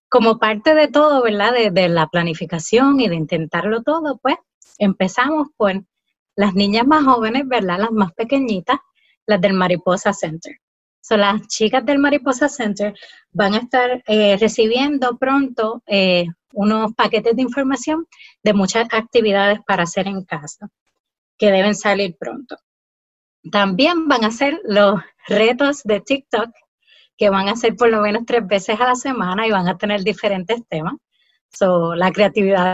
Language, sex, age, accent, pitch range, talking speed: English, female, 20-39, American, 195-245 Hz, 155 wpm